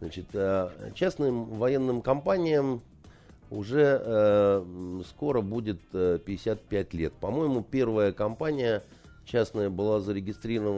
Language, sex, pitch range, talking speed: Russian, male, 105-150 Hz, 85 wpm